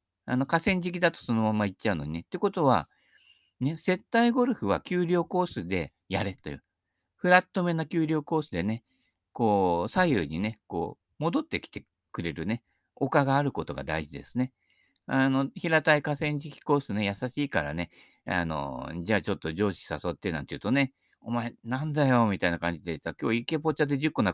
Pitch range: 95-150 Hz